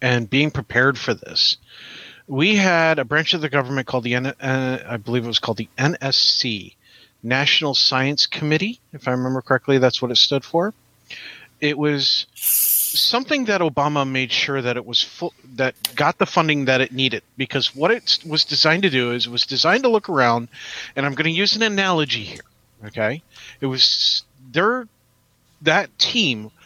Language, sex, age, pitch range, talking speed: English, male, 40-59, 125-155 Hz, 180 wpm